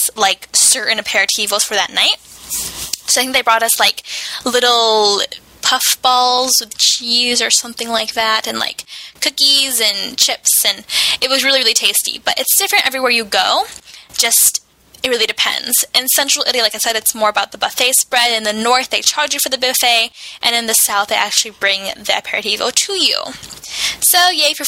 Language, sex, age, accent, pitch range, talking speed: Italian, female, 10-29, American, 225-290 Hz, 190 wpm